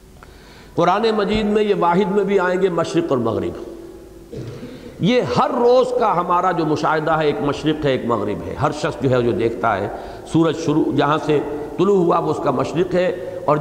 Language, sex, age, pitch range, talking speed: English, male, 60-79, 150-210 Hz, 195 wpm